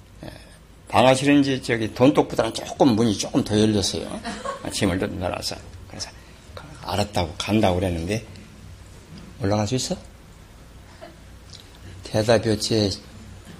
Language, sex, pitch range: Korean, male, 95-130 Hz